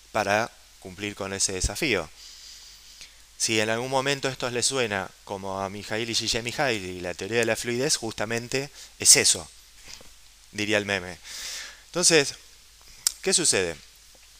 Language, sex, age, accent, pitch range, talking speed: Spanish, male, 20-39, Argentinian, 105-140 Hz, 135 wpm